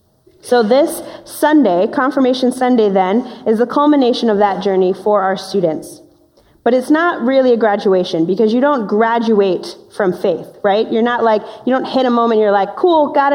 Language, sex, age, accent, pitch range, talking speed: English, female, 30-49, American, 200-250 Hz, 180 wpm